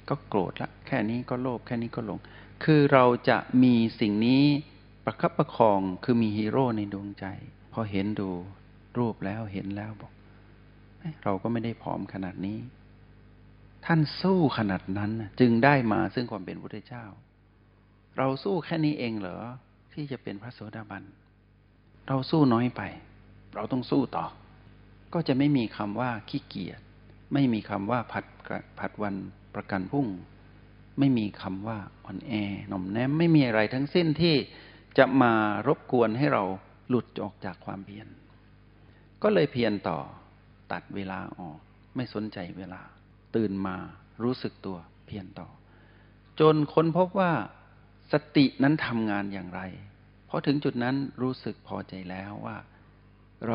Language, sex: Thai, male